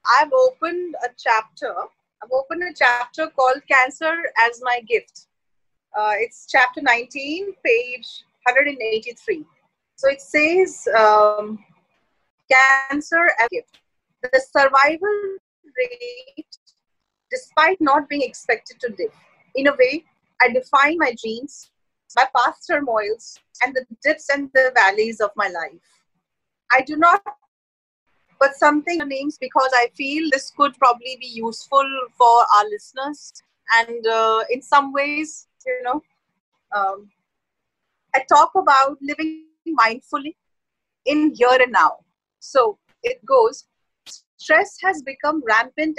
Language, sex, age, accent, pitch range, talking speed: Hindi, female, 30-49, native, 245-320 Hz, 130 wpm